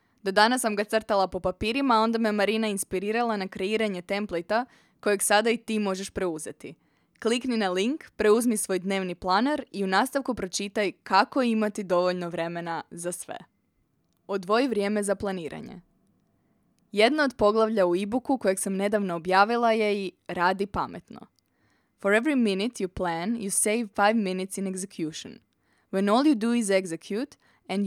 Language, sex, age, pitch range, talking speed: Croatian, female, 20-39, 185-225 Hz, 155 wpm